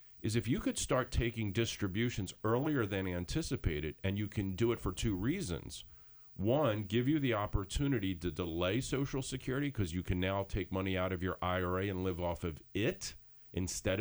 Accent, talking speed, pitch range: American, 185 wpm, 90-120 Hz